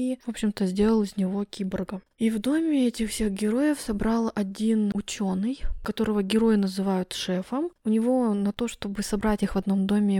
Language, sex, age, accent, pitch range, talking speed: Russian, female, 20-39, native, 195-235 Hz, 175 wpm